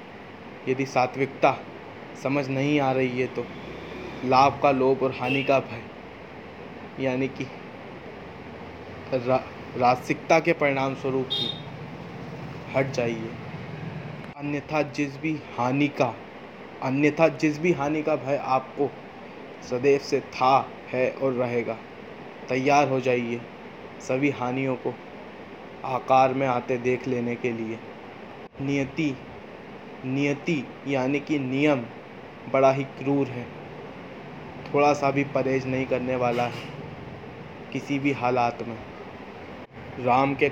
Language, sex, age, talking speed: Hindi, male, 20-39, 115 wpm